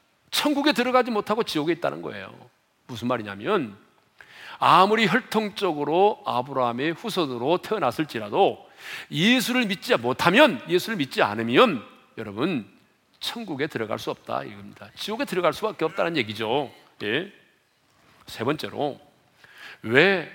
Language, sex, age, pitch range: Korean, male, 40-59, 135-220 Hz